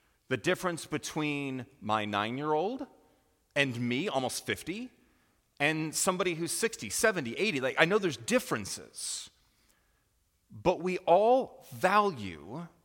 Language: English